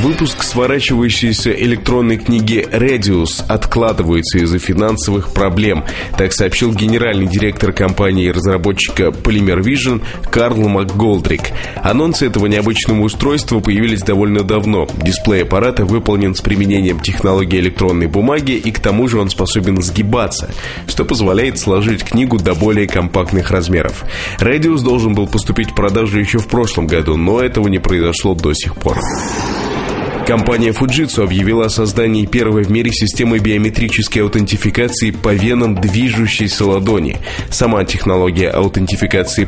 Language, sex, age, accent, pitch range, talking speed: Russian, male, 20-39, native, 95-115 Hz, 130 wpm